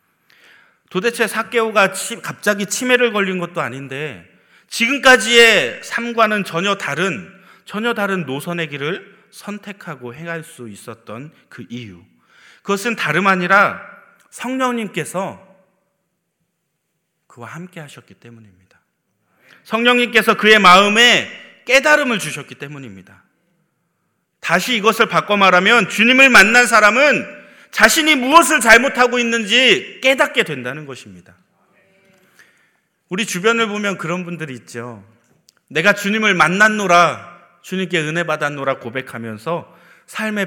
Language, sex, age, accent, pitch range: Korean, male, 40-59, native, 145-225 Hz